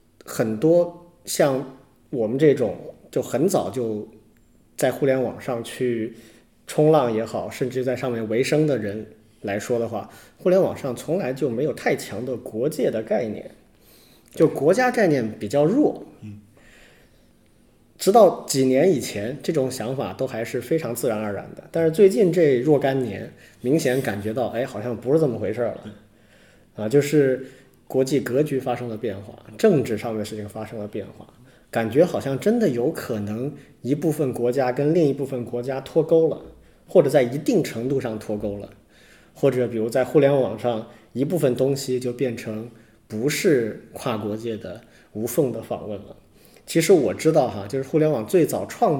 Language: Chinese